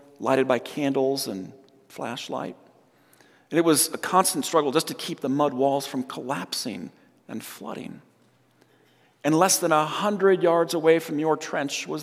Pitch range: 140-180 Hz